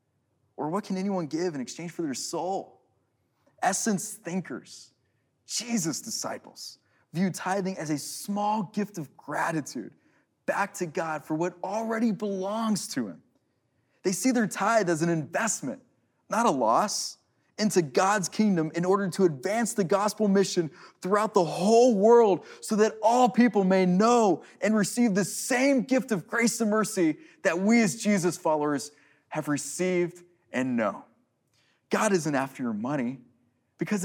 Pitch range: 155-215 Hz